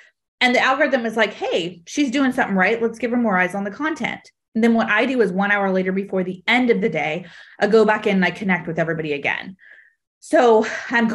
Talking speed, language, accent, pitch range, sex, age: 240 wpm, English, American, 185-235 Hz, female, 20-39